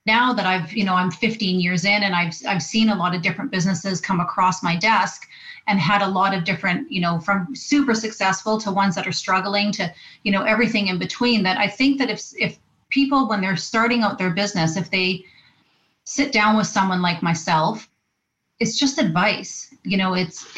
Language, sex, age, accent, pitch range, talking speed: English, female, 30-49, American, 185-220 Hz, 205 wpm